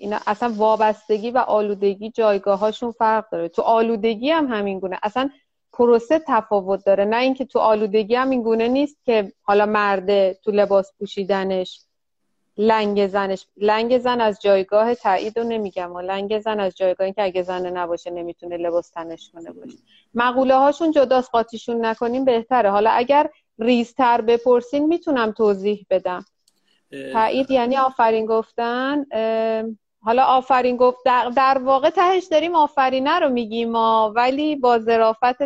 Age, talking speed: 30-49, 145 wpm